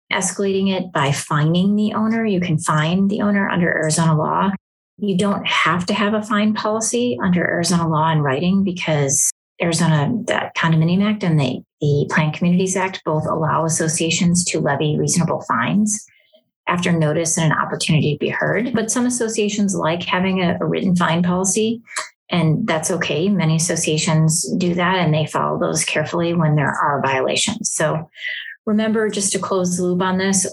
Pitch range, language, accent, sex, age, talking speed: 160-195 Hz, English, American, female, 30-49, 170 wpm